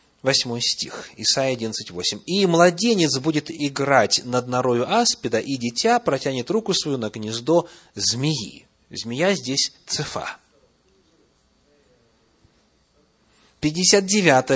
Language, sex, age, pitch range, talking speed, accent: Russian, male, 30-49, 115-175 Hz, 95 wpm, native